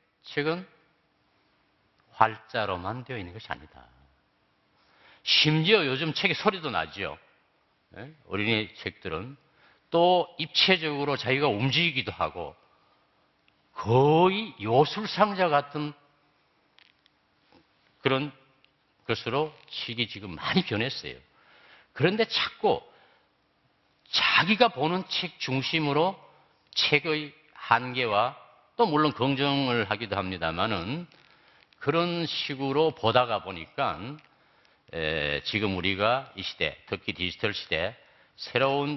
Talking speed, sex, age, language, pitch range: 80 wpm, male, 50-69, English, 105-155 Hz